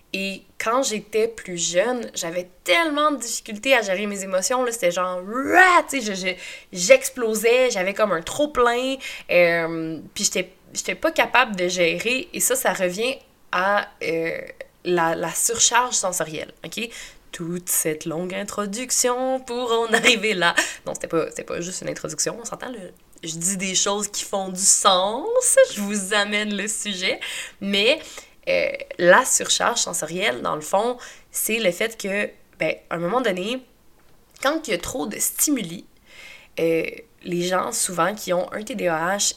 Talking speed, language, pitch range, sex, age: 165 wpm, French, 180-250 Hz, female, 20-39